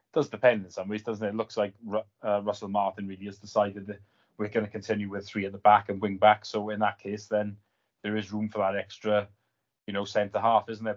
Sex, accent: male, British